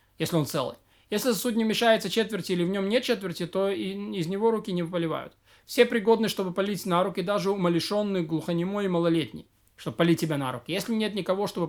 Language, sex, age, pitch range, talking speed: Russian, male, 20-39, 170-210 Hz, 205 wpm